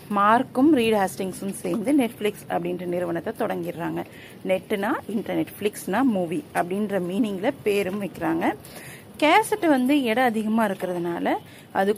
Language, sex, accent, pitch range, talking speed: Tamil, female, native, 185-250 Hz, 100 wpm